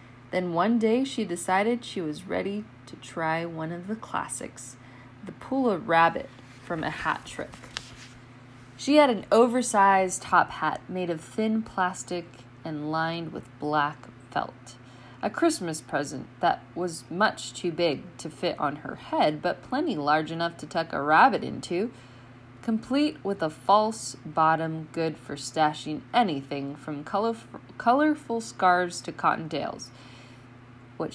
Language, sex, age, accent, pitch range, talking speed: English, female, 20-39, American, 130-200 Hz, 145 wpm